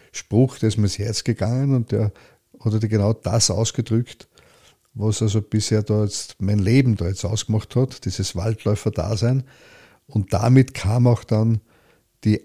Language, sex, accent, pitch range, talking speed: German, male, Austrian, 105-120 Hz, 155 wpm